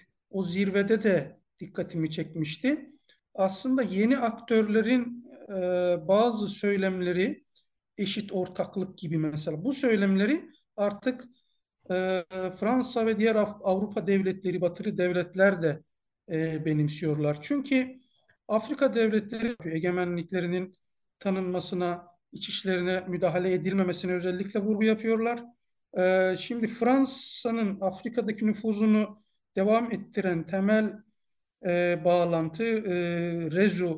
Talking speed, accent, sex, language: 85 wpm, native, male, Turkish